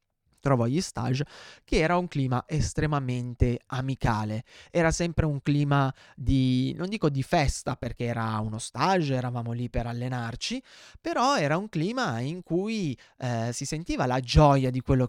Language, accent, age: Italian, native, 20-39